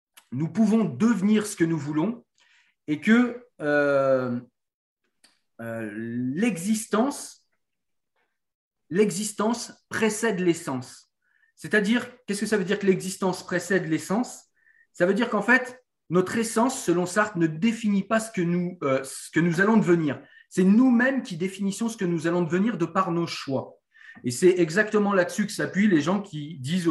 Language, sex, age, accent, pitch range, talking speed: French, male, 40-59, French, 150-210 Hz, 155 wpm